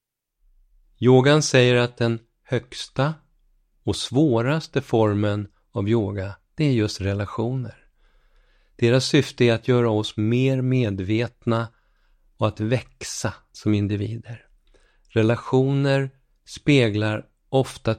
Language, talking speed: Swedish, 100 wpm